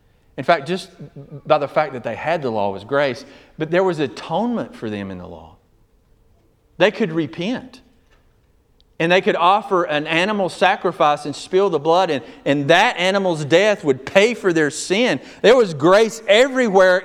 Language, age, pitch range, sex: English, 40-59, 135-190 Hz, male